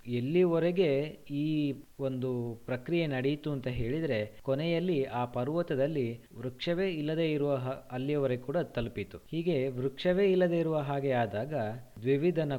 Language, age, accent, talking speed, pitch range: Kannada, 20-39, native, 110 wpm, 115-145 Hz